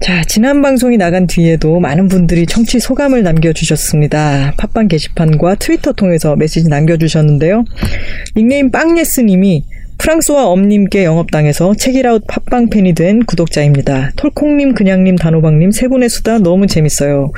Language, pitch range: Korean, 160-240 Hz